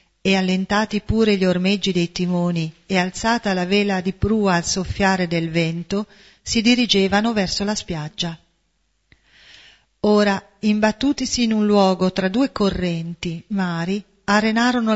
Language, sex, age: Italian, female, 40-59